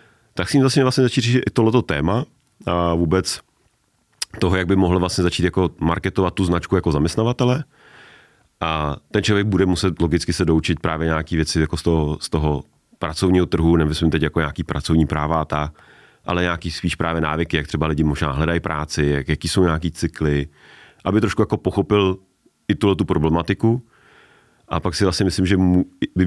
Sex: male